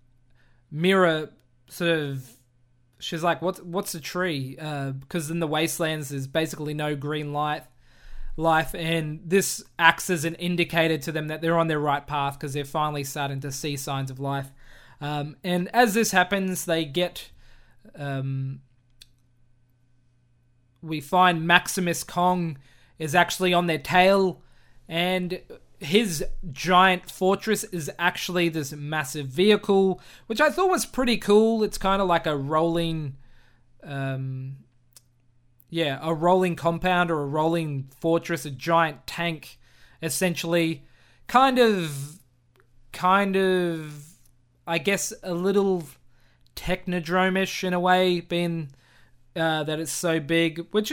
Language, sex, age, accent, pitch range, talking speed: English, male, 20-39, Australian, 140-180 Hz, 135 wpm